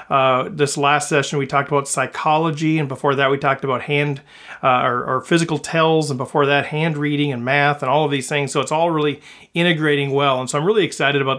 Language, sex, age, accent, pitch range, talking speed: English, male, 40-59, American, 140-155 Hz, 230 wpm